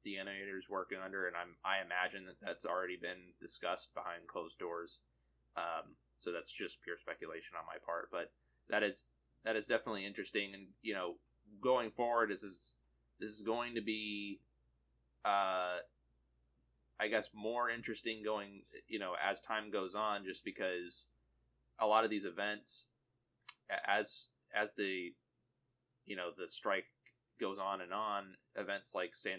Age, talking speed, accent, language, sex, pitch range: 20-39, 155 wpm, American, English, male, 90-110 Hz